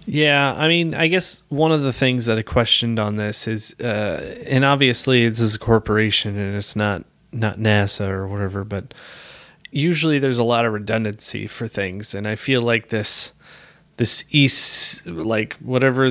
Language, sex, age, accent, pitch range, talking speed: English, male, 20-39, American, 105-130 Hz, 175 wpm